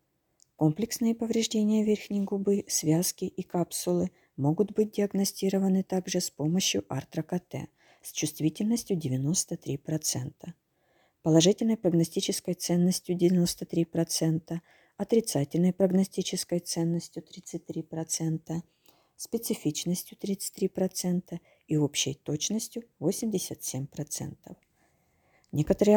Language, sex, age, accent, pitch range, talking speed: Ukrainian, female, 50-69, native, 155-200 Hz, 75 wpm